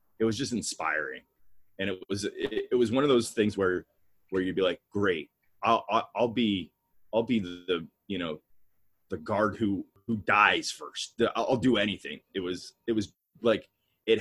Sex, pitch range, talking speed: male, 85-115 Hz, 180 wpm